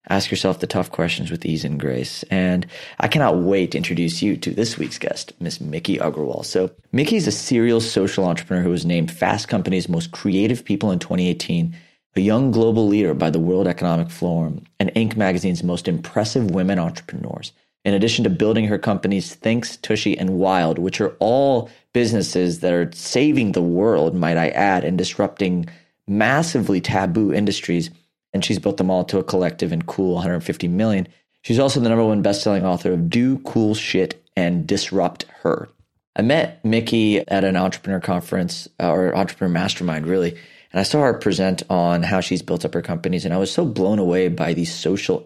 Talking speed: 185 wpm